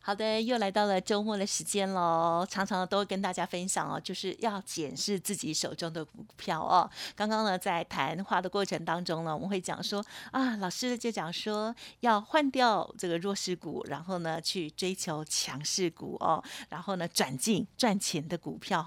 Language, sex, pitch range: Chinese, female, 170-205 Hz